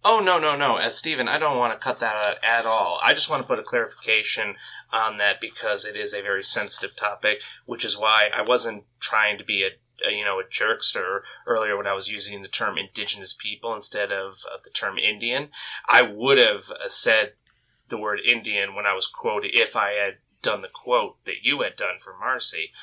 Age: 30-49